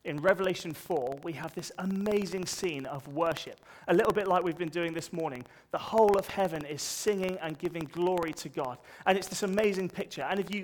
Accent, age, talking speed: British, 30-49, 215 wpm